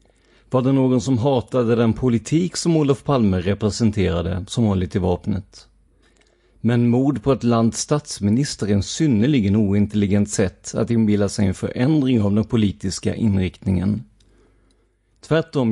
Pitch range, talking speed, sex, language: 100-125 Hz, 135 wpm, male, Swedish